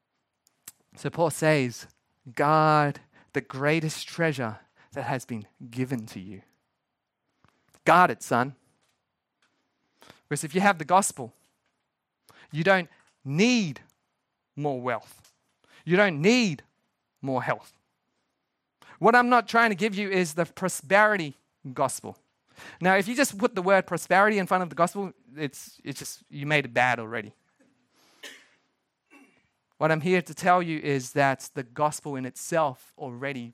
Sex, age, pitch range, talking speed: male, 30-49, 130-170 Hz, 140 wpm